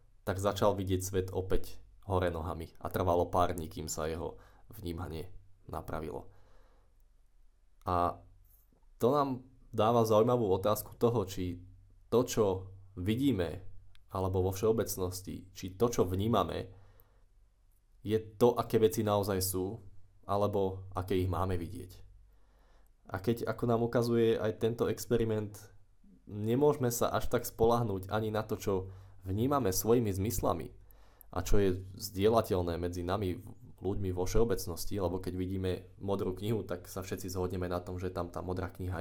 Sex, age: male, 20-39